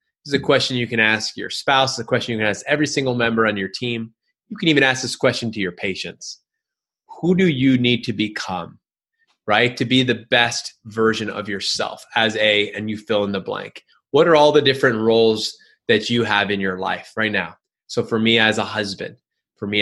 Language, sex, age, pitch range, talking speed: English, male, 20-39, 105-140 Hz, 225 wpm